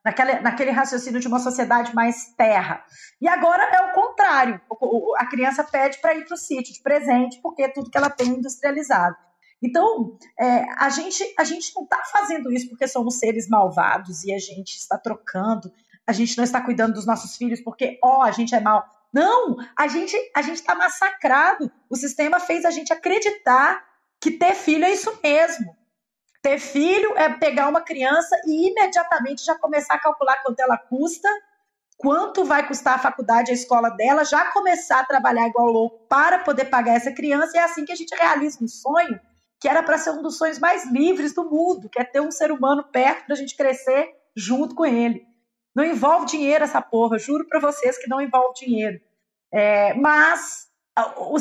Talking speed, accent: 190 wpm, Brazilian